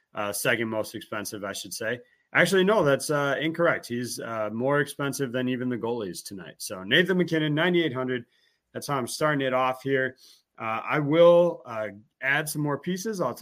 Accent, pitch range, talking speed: American, 130-160 Hz, 185 wpm